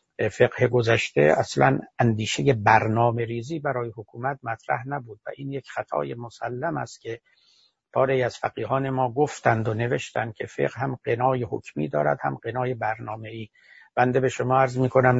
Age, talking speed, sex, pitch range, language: 60-79, 155 wpm, male, 115-140 Hz, Persian